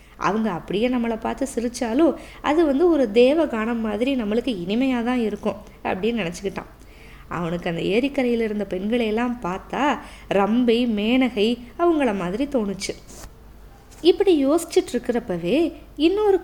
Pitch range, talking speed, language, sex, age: 220-290 Hz, 110 wpm, Tamil, female, 20-39